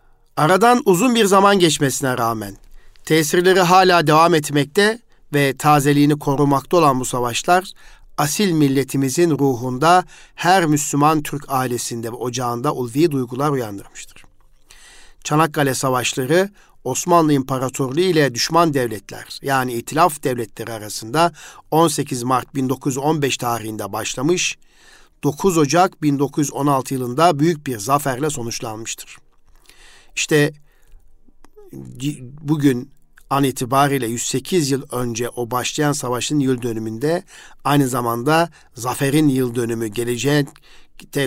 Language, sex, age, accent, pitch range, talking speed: Turkish, male, 50-69, native, 125-155 Hz, 100 wpm